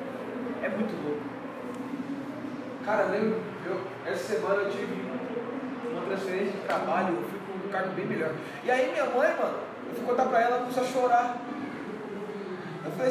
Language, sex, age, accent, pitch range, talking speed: Portuguese, male, 20-39, Brazilian, 195-245 Hz, 160 wpm